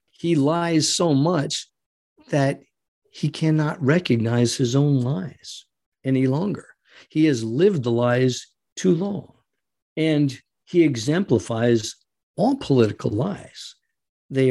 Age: 50-69